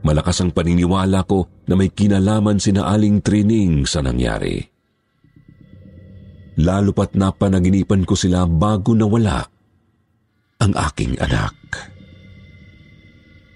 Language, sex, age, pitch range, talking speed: Filipino, male, 40-59, 95-110 Hz, 100 wpm